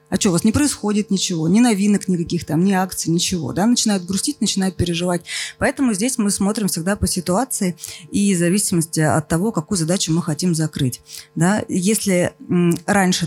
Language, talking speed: Russian, 175 wpm